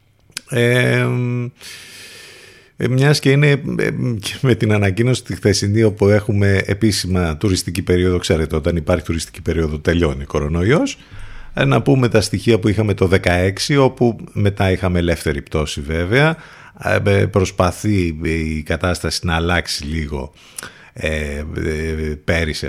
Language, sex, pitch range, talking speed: Greek, male, 85-110 Hz, 110 wpm